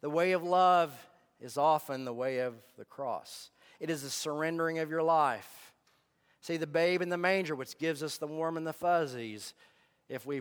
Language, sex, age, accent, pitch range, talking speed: English, male, 40-59, American, 135-195 Hz, 195 wpm